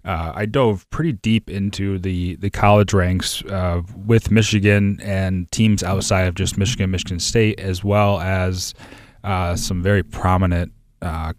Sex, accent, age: male, American, 30-49